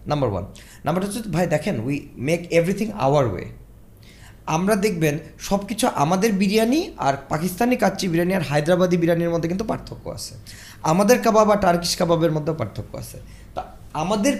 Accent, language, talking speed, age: native, Bengali, 160 wpm, 20-39